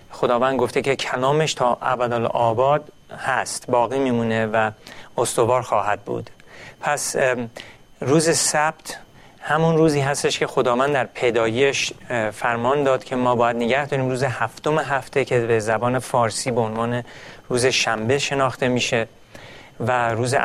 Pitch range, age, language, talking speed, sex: 115-140 Hz, 40-59, Persian, 130 wpm, male